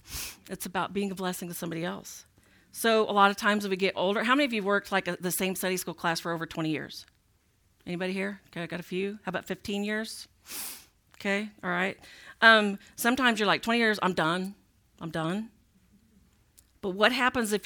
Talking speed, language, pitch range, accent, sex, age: 205 wpm, English, 170-200 Hz, American, female, 40-59